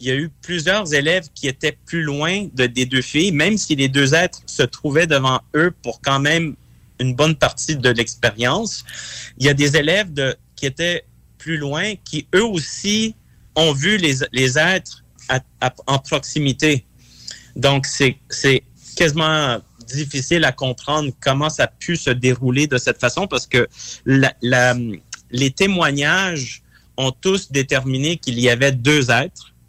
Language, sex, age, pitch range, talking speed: French, male, 30-49, 120-150 Hz, 170 wpm